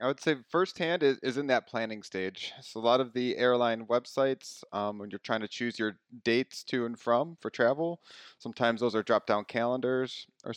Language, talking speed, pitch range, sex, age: English, 210 wpm, 105-125 Hz, male, 30-49